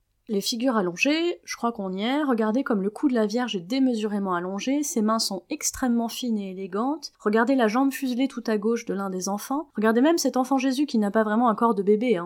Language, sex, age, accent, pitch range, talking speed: French, female, 20-39, French, 200-255 Hz, 245 wpm